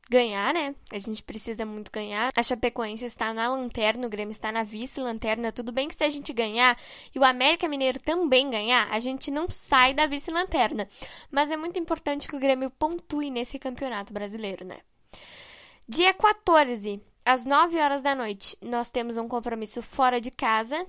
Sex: female